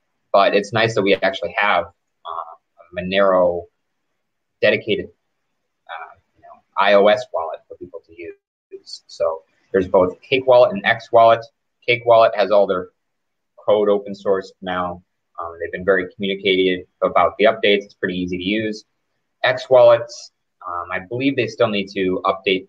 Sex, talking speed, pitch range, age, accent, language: male, 160 wpm, 95-140 Hz, 30-49, American, English